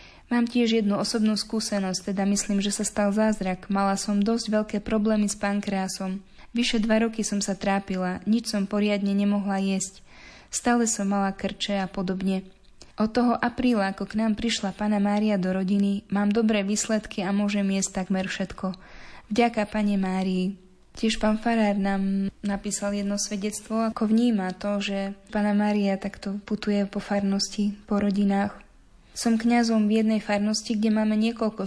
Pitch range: 195-220 Hz